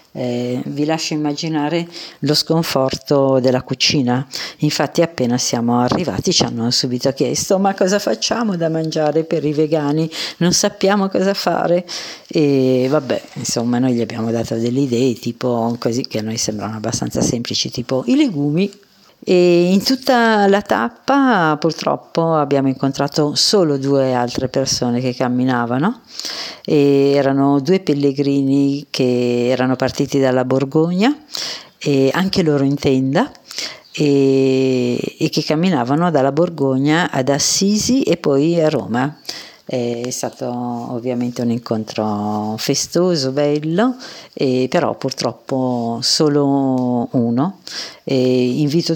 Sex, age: female, 50-69